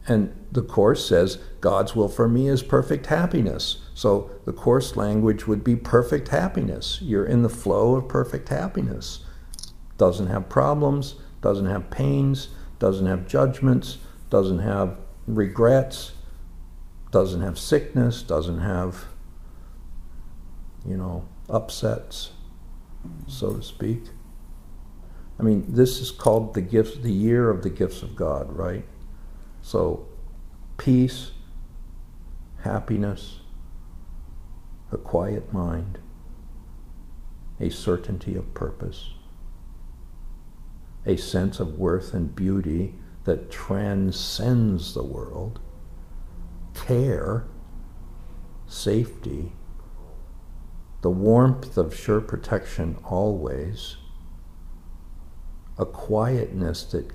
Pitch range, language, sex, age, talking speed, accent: 75-110 Hz, English, male, 60-79, 100 wpm, American